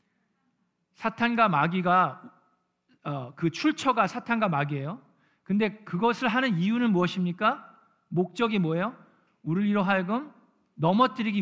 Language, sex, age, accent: Korean, male, 40-59, native